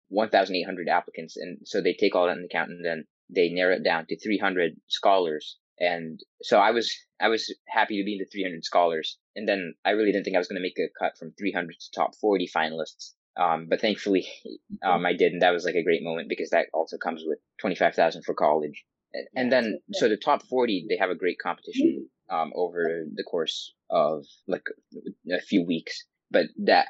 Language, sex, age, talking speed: English, male, 20-39, 210 wpm